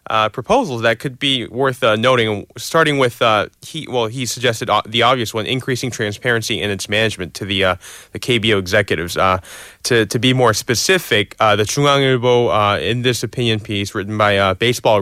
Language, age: English, 20-39